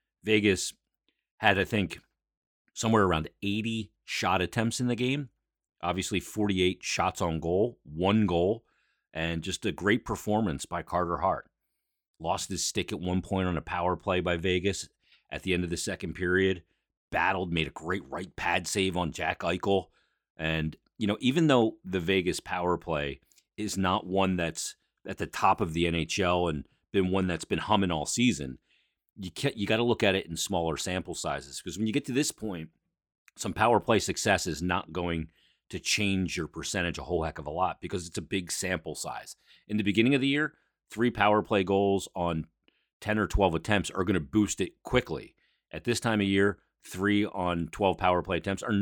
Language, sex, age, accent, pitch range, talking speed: English, male, 40-59, American, 85-105 Hz, 195 wpm